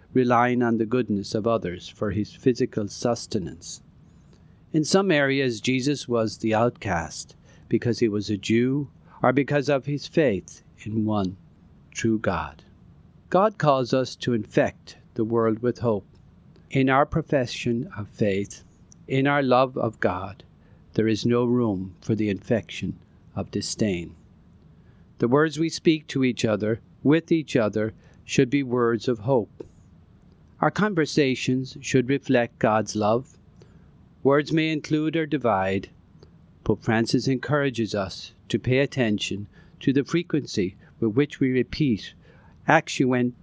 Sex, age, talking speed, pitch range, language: male, 50-69, 140 wpm, 105-140 Hz, English